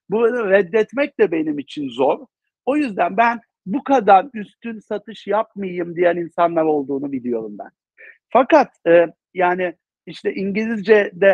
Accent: native